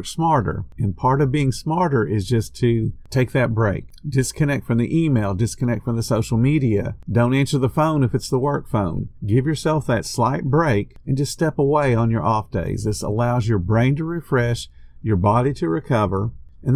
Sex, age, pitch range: male, 50-69, 105-140 Hz